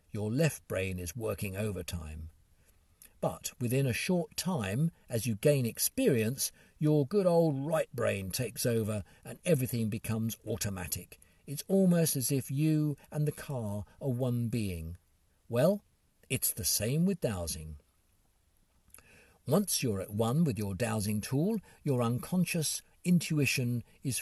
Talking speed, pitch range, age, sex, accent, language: 135 wpm, 100-150 Hz, 50-69, male, British, English